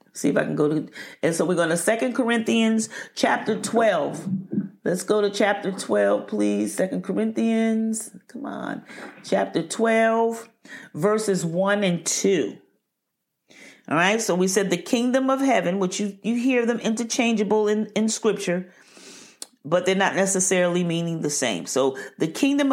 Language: English